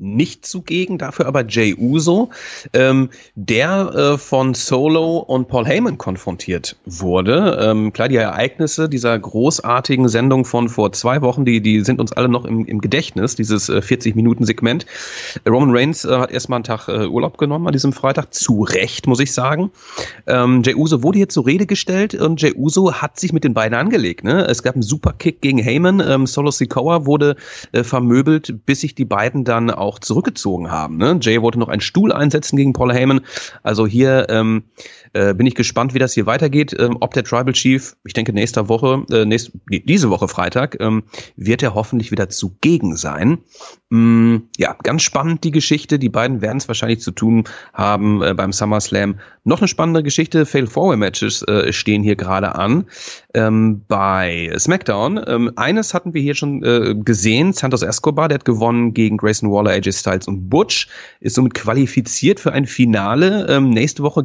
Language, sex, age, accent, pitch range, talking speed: German, male, 30-49, German, 110-145 Hz, 185 wpm